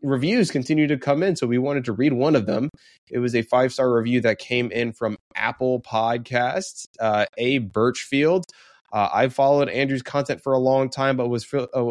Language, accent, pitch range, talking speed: English, American, 100-125 Hz, 200 wpm